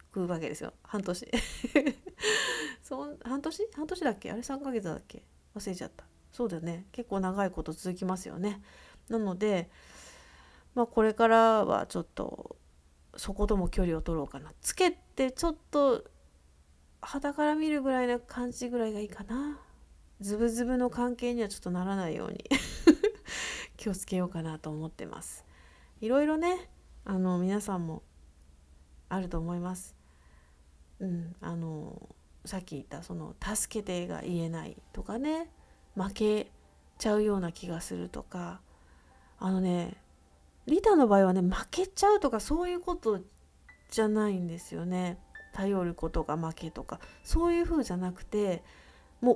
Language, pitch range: Japanese, 165-250 Hz